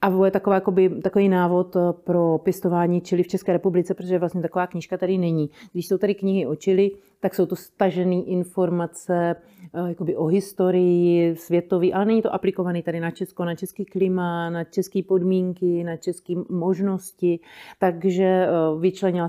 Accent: native